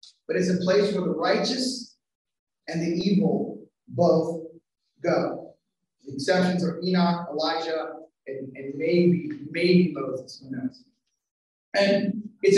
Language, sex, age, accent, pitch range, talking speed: English, male, 30-49, American, 175-235 Hz, 125 wpm